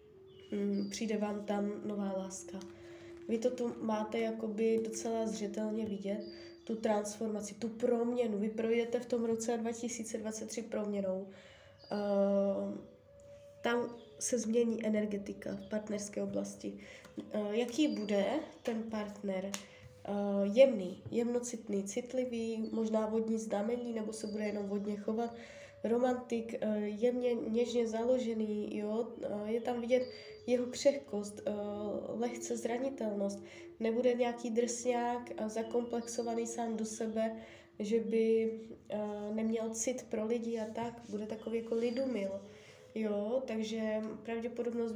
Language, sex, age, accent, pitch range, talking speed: Czech, female, 20-39, native, 210-240 Hz, 105 wpm